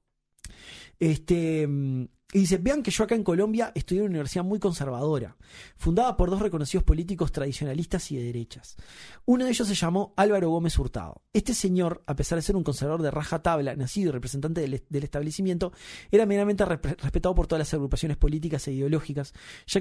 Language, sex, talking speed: Spanish, male, 185 wpm